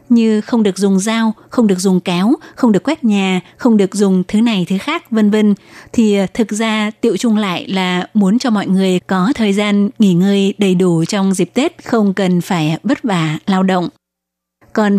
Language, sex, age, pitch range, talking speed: Vietnamese, female, 20-39, 190-225 Hz, 205 wpm